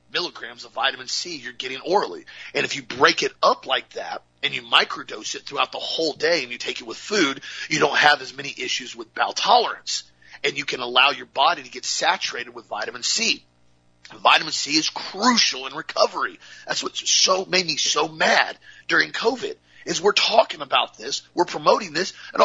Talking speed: 200 wpm